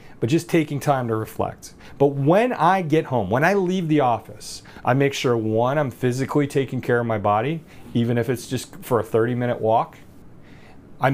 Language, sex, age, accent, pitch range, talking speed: English, male, 40-59, American, 115-145 Hz, 200 wpm